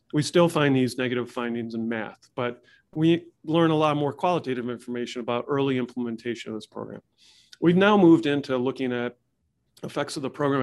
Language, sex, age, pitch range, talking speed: English, male, 40-59, 120-155 Hz, 180 wpm